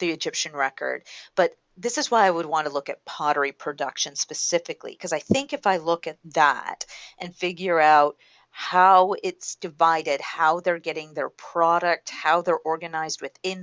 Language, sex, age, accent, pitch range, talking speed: English, female, 40-59, American, 160-230 Hz, 170 wpm